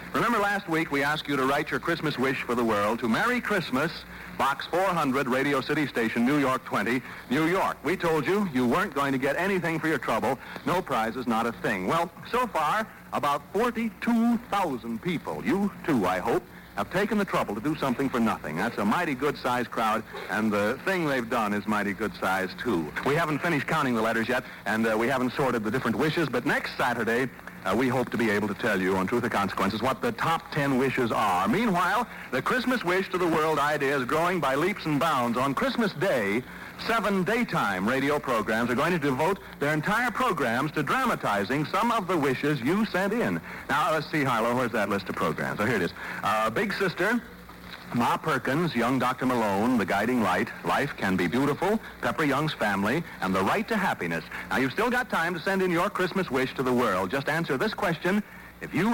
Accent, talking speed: American, 215 wpm